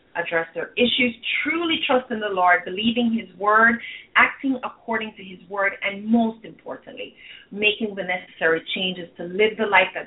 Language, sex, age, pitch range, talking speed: English, female, 30-49, 185-245 Hz, 165 wpm